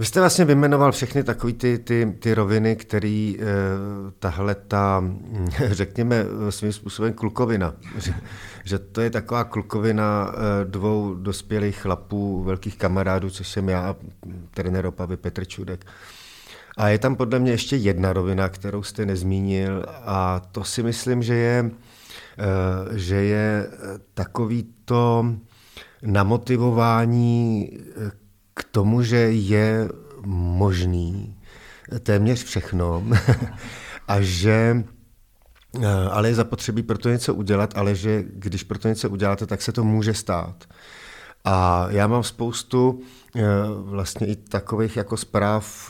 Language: Czech